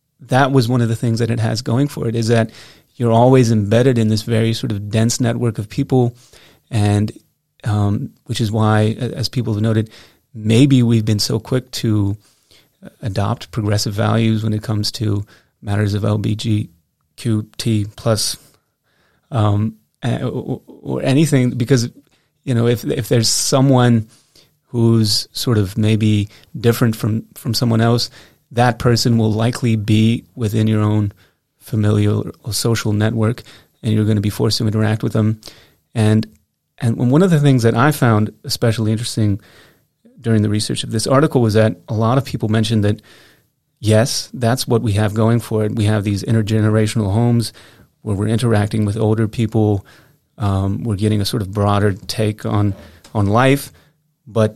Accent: American